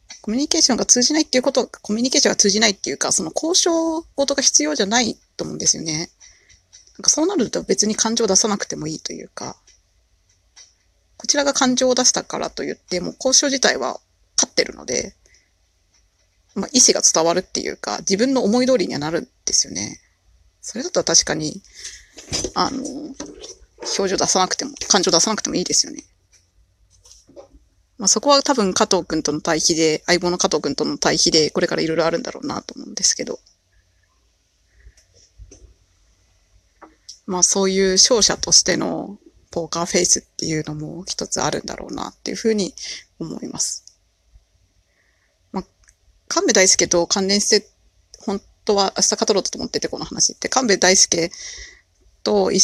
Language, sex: Japanese, female